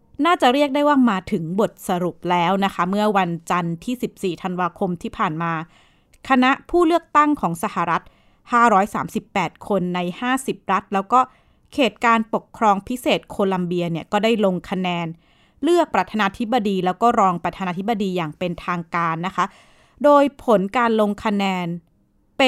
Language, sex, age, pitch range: Thai, female, 20-39, 180-230 Hz